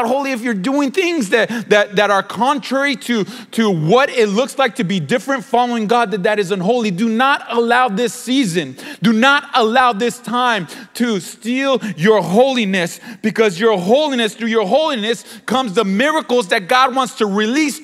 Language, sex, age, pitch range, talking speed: English, male, 30-49, 205-255 Hz, 180 wpm